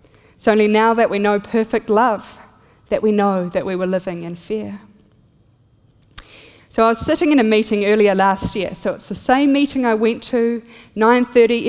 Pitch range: 185-225 Hz